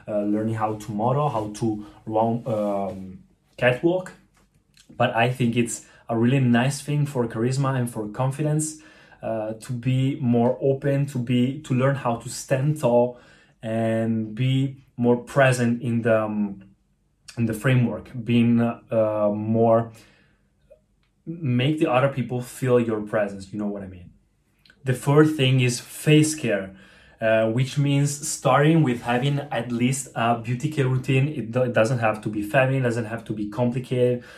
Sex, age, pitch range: male, 20-39, 110-130 Hz